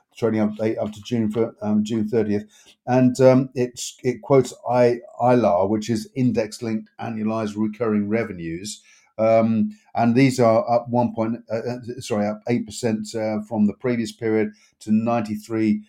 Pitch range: 105-115 Hz